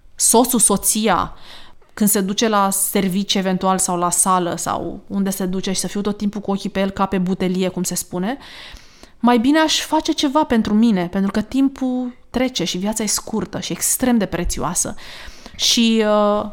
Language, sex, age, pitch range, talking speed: Romanian, female, 20-39, 195-245 Hz, 180 wpm